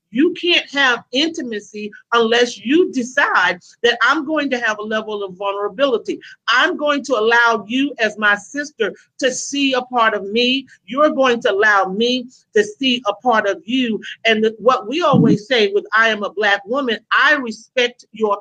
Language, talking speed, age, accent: English, 180 wpm, 40-59, American